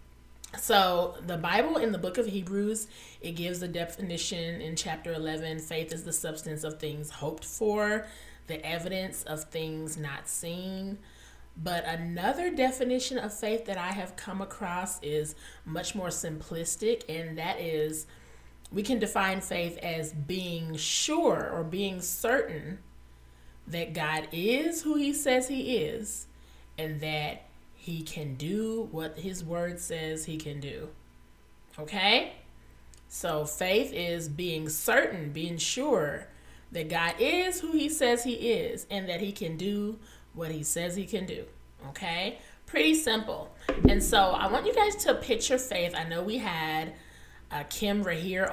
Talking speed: 150 wpm